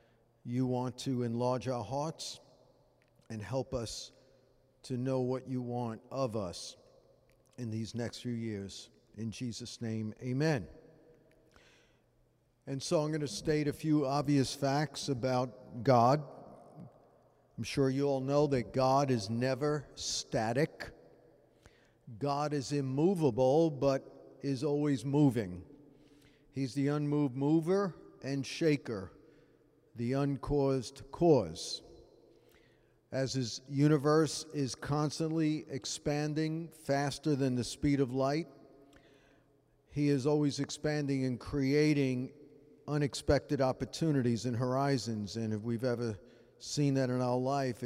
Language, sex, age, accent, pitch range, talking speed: English, male, 50-69, American, 125-145 Hz, 115 wpm